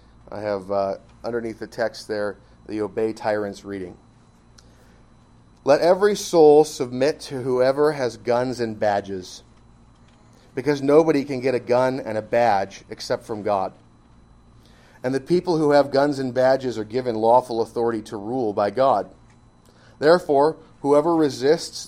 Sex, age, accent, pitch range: male, 30-49, American, 115-145 Hz